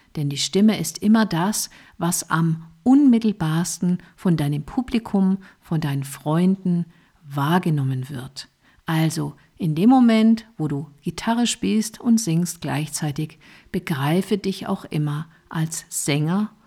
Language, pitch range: German, 150-200 Hz